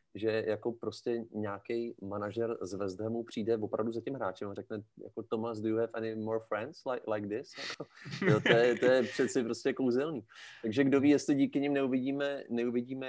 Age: 30-49